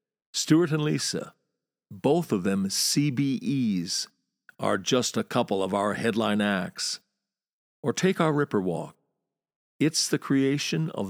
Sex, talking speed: male, 130 wpm